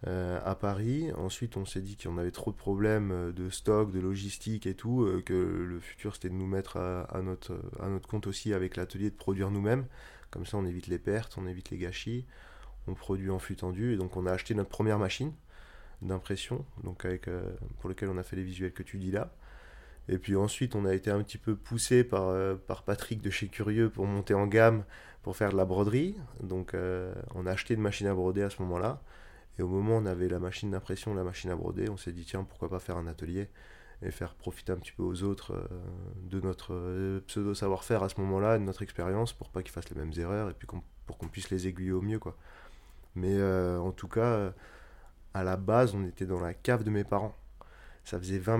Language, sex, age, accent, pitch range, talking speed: French, male, 20-39, French, 90-110 Hz, 240 wpm